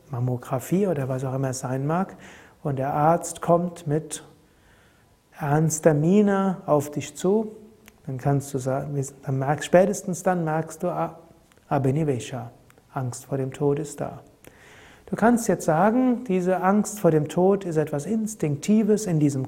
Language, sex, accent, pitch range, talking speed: German, male, German, 140-175 Hz, 150 wpm